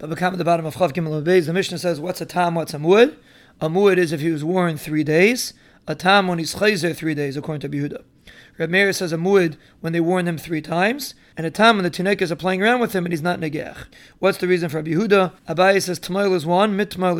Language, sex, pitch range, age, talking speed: English, male, 170-195 Hz, 30-49, 250 wpm